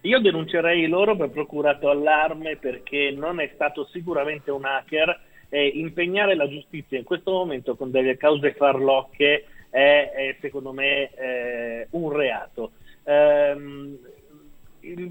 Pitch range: 140-175 Hz